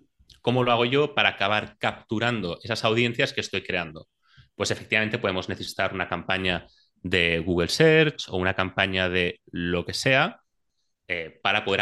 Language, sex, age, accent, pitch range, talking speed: Spanish, male, 30-49, Spanish, 90-115 Hz, 155 wpm